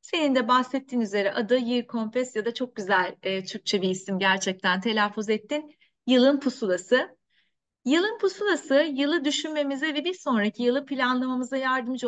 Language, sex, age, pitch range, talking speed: Turkish, female, 30-49, 210-290 Hz, 150 wpm